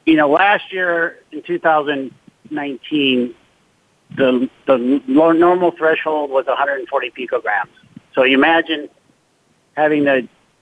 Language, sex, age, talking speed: English, male, 50-69, 105 wpm